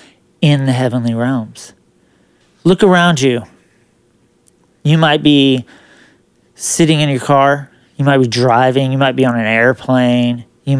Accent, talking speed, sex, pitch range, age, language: American, 140 wpm, male, 130-160 Hz, 40-59, English